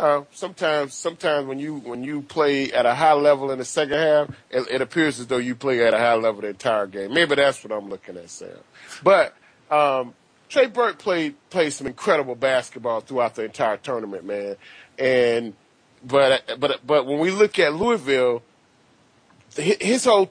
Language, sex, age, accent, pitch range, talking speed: English, male, 30-49, American, 135-195 Hz, 185 wpm